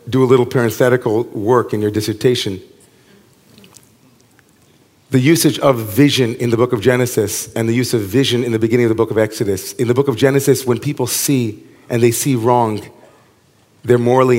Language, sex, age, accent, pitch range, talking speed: English, male, 40-59, American, 115-135 Hz, 185 wpm